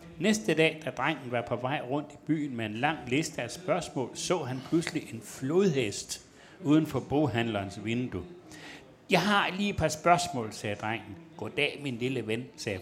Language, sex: Danish, male